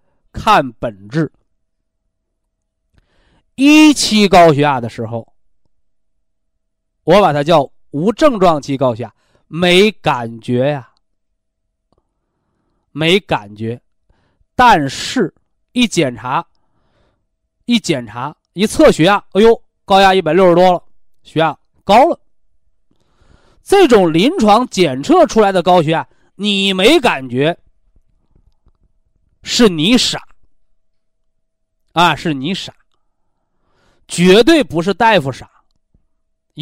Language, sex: Chinese, male